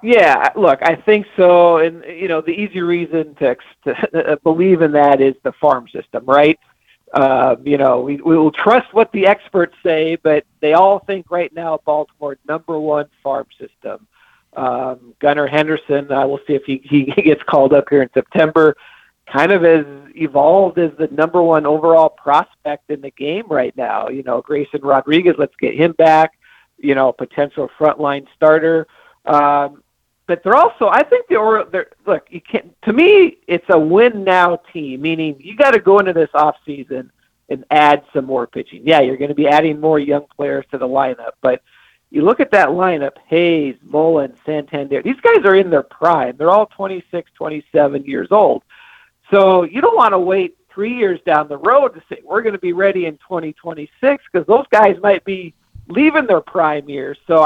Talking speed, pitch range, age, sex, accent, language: 185 wpm, 145-190 Hz, 50-69, male, American, English